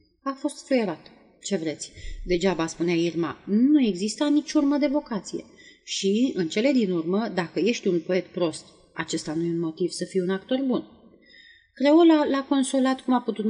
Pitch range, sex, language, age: 170-245 Hz, female, Romanian, 30-49